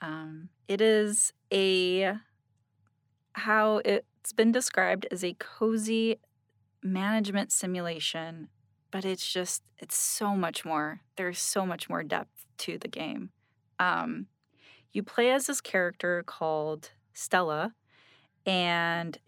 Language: English